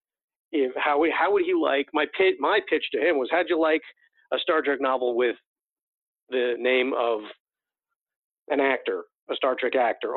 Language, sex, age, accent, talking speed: English, male, 50-69, American, 165 wpm